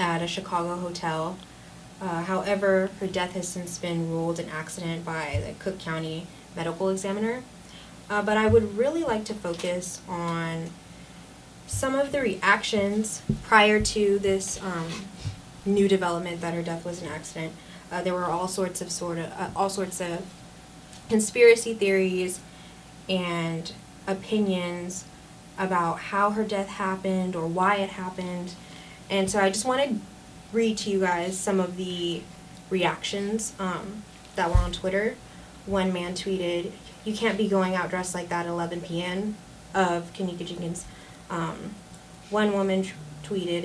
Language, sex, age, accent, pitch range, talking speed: English, female, 20-39, American, 170-195 Hz, 150 wpm